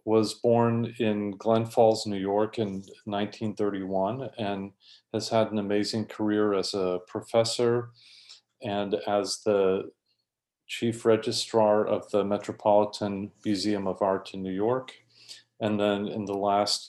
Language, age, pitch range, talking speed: English, 40-59, 100-110 Hz, 130 wpm